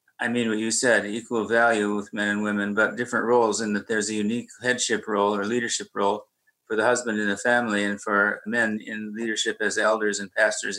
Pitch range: 105-120 Hz